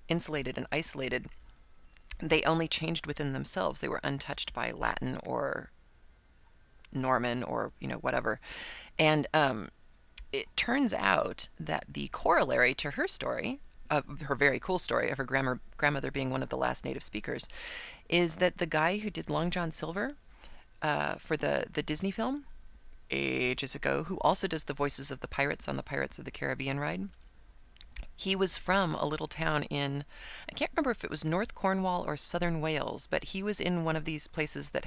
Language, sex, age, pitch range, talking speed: English, female, 30-49, 130-180 Hz, 180 wpm